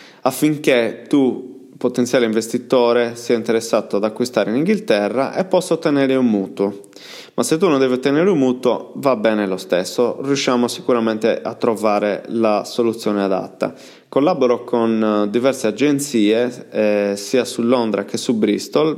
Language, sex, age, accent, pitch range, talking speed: Italian, male, 20-39, native, 105-125 Hz, 140 wpm